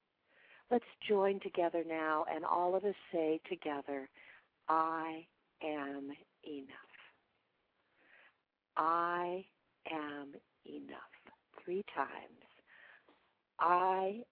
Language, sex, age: English, female, 50-69